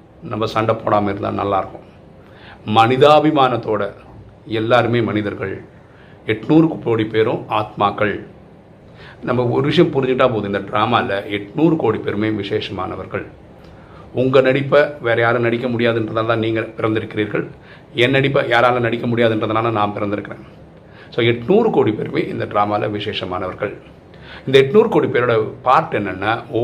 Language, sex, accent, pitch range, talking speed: Tamil, male, native, 110-125 Hz, 115 wpm